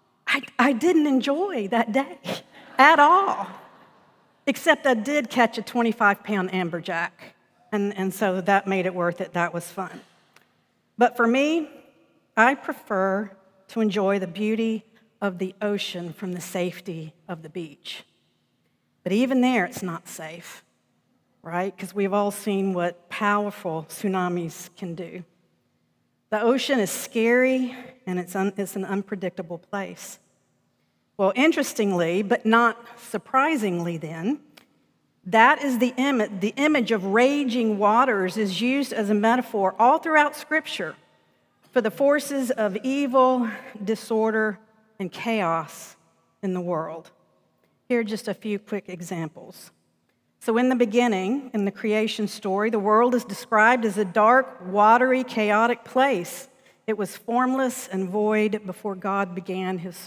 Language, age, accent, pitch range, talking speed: English, 50-69, American, 190-245 Hz, 135 wpm